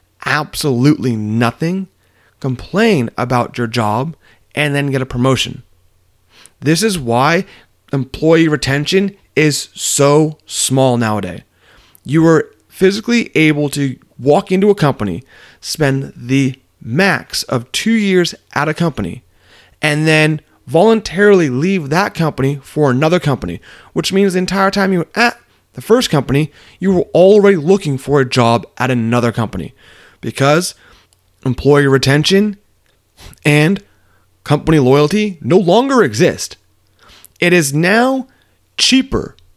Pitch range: 120-180 Hz